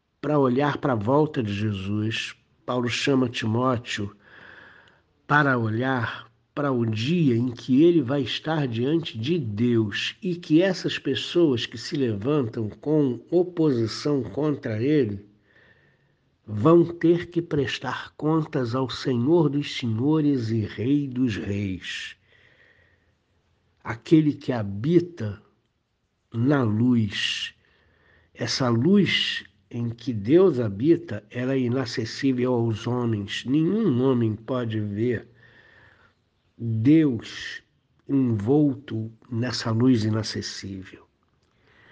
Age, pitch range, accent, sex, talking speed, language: 60-79, 115-145 Hz, Brazilian, male, 105 wpm, Portuguese